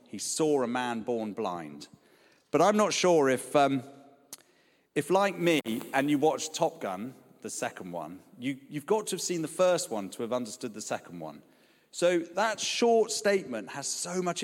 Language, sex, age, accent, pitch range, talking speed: English, male, 40-59, British, 120-170 Hz, 180 wpm